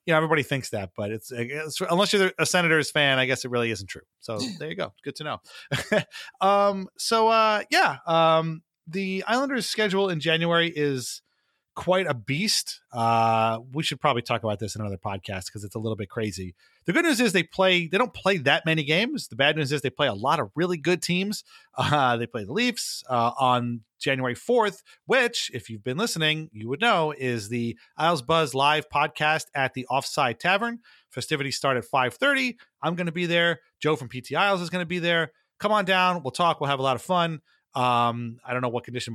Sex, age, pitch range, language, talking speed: male, 30-49, 120-180 Hz, English, 220 wpm